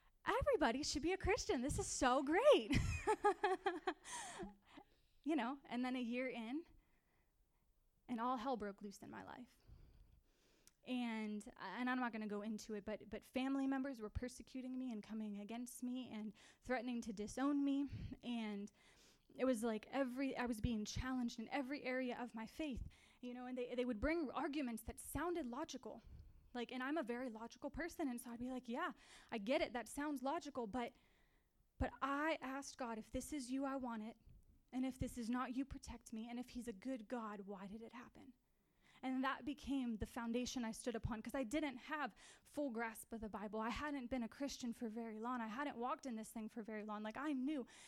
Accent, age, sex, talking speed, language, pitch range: American, 20-39, female, 205 wpm, English, 235-285 Hz